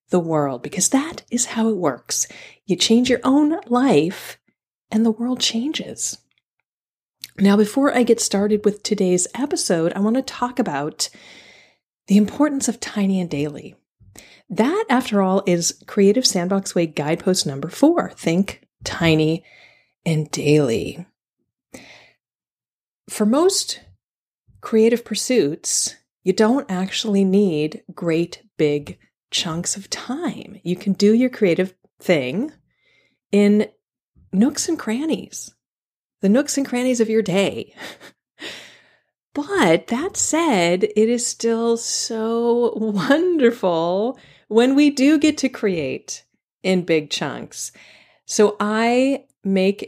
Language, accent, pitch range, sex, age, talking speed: English, American, 185-250 Hz, female, 30-49, 120 wpm